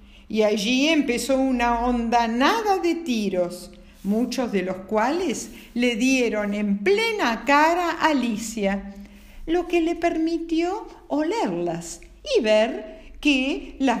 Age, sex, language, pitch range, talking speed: 50-69, female, Spanish, 215-330 Hz, 120 wpm